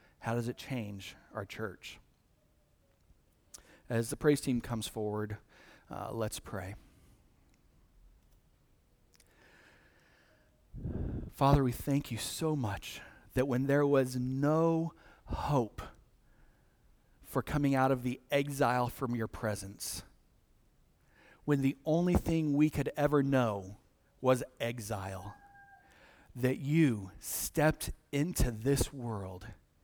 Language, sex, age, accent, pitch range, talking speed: English, male, 40-59, American, 105-145 Hz, 105 wpm